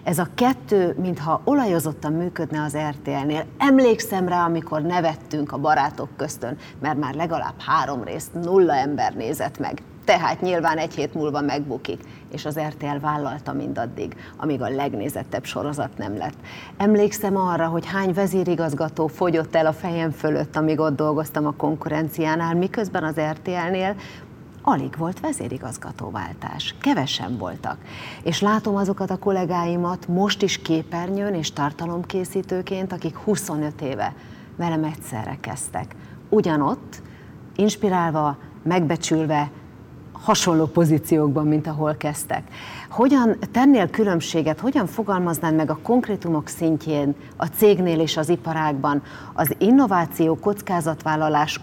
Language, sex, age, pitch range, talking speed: Hungarian, female, 30-49, 155-185 Hz, 120 wpm